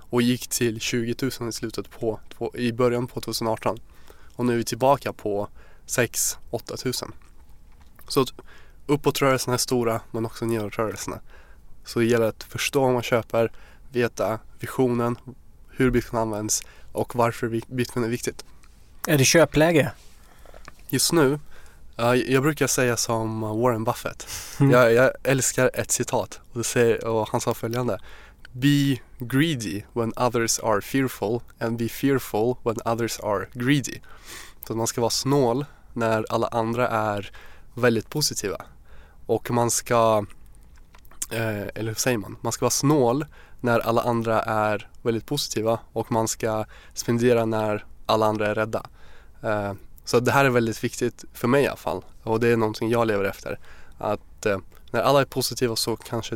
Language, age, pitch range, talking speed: English, 20-39, 110-125 Hz, 150 wpm